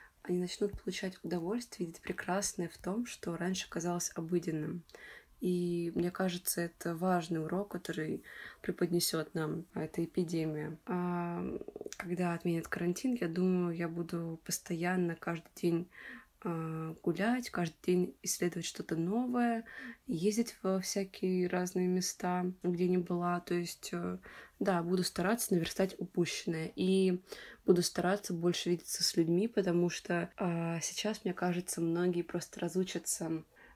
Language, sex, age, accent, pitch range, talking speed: Russian, female, 20-39, native, 170-185 Hz, 125 wpm